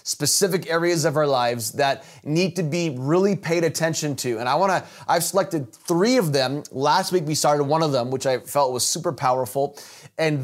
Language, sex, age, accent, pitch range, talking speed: English, male, 20-39, American, 140-175 Hz, 200 wpm